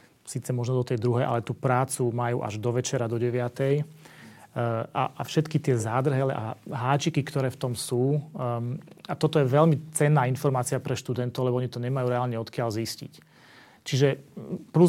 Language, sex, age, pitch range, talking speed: Slovak, male, 30-49, 120-140 Hz, 165 wpm